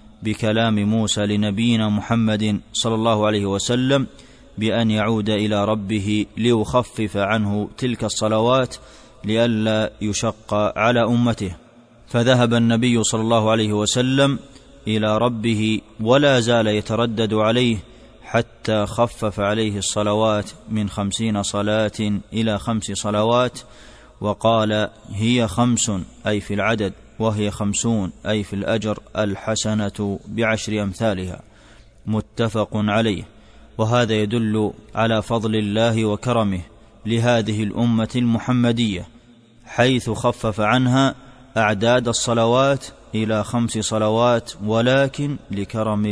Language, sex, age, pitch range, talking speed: Arabic, male, 20-39, 105-115 Hz, 100 wpm